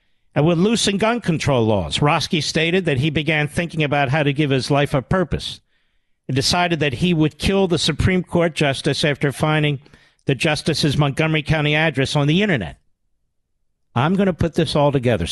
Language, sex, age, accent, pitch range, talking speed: English, male, 50-69, American, 115-155 Hz, 190 wpm